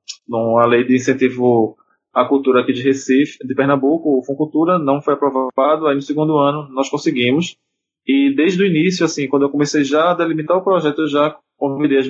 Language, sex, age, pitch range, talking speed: Portuguese, male, 20-39, 130-150 Hz, 195 wpm